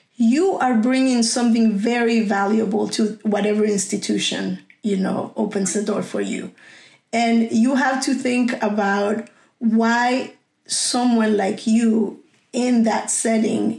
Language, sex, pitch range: English, female, 205-235 Hz